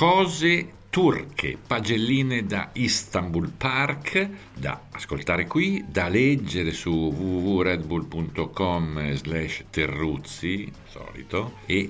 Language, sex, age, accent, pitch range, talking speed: Italian, male, 50-69, native, 75-110 Hz, 80 wpm